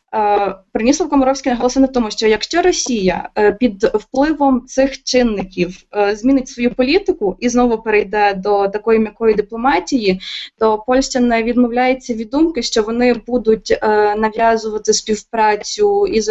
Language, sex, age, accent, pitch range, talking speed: Russian, female, 20-39, native, 225-265 Hz, 125 wpm